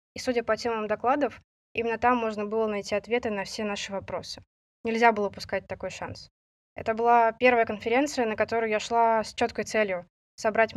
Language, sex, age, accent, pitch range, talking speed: Russian, female, 20-39, native, 195-230 Hz, 180 wpm